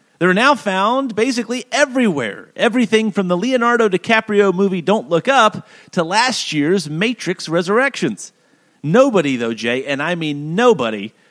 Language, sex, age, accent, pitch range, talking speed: English, male, 40-59, American, 145-220 Hz, 140 wpm